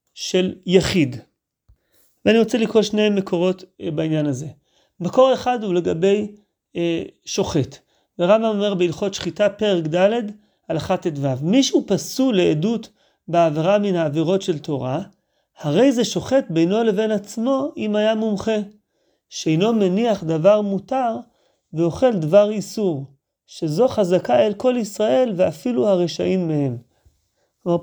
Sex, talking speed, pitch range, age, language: male, 120 wpm, 175-225 Hz, 30-49, Hebrew